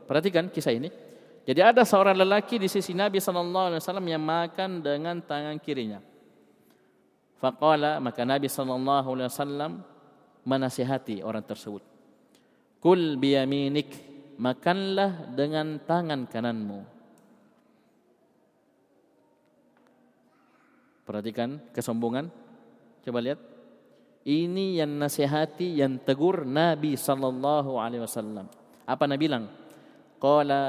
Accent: native